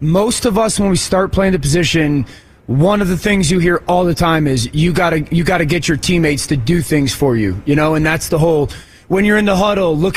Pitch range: 150-185 Hz